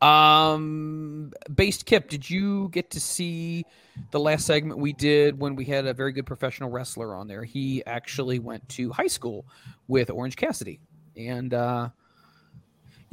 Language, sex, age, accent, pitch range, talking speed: English, male, 30-49, American, 115-145 Hz, 155 wpm